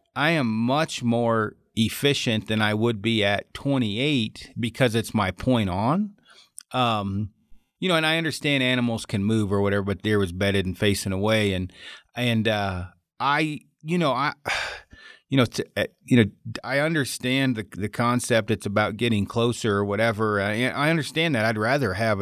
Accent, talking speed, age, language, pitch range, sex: American, 175 wpm, 40-59, English, 105-130 Hz, male